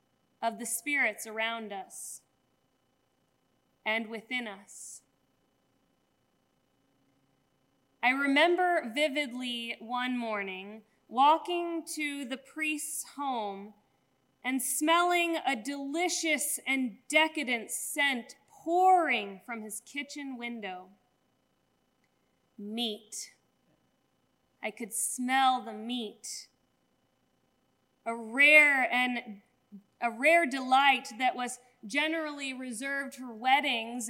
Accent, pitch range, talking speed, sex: American, 210-285 Hz, 85 wpm, female